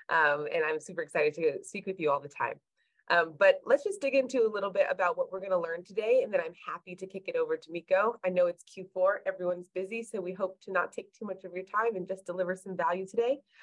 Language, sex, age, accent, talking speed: English, female, 20-39, American, 265 wpm